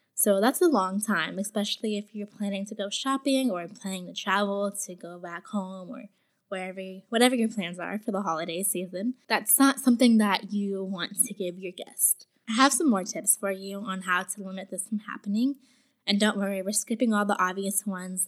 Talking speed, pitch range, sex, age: 205 wpm, 190-225 Hz, female, 10-29